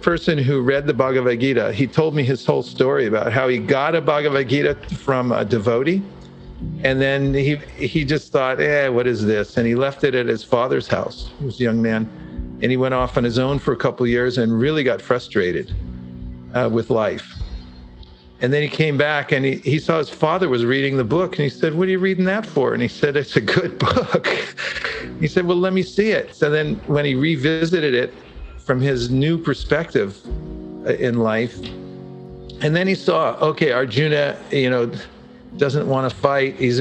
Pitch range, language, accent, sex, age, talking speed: 120-160 Hz, English, American, male, 50-69, 205 wpm